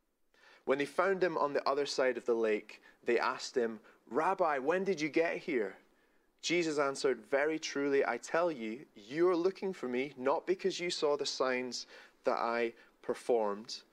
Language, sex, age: English, male, 20-39